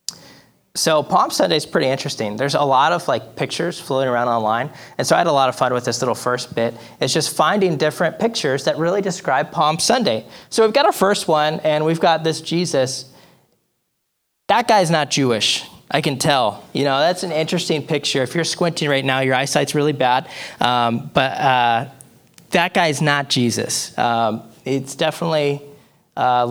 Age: 20-39